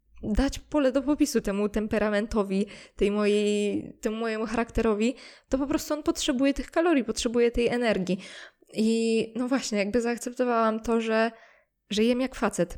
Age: 20-39